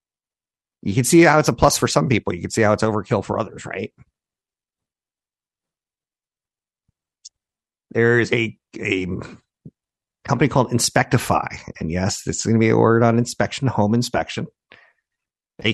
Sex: male